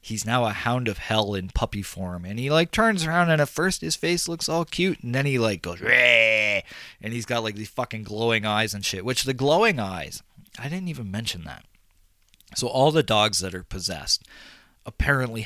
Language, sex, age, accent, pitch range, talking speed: English, male, 20-39, American, 100-130 Hz, 210 wpm